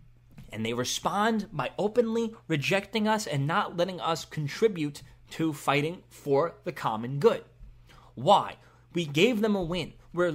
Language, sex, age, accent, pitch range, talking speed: English, male, 30-49, American, 145-220 Hz, 145 wpm